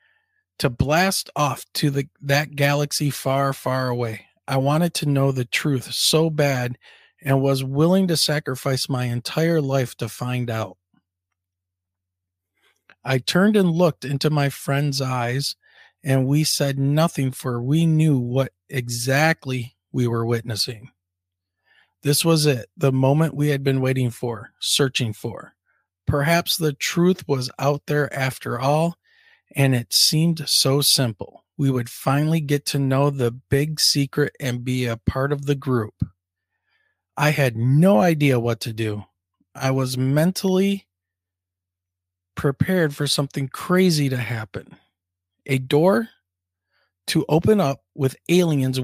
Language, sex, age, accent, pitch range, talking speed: English, male, 40-59, American, 120-155 Hz, 140 wpm